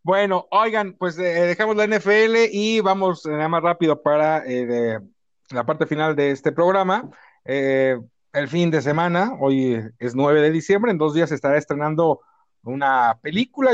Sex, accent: male, Mexican